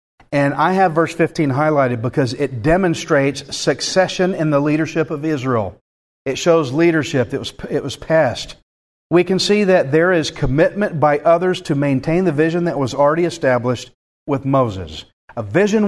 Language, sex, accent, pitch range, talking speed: English, male, American, 130-180 Hz, 165 wpm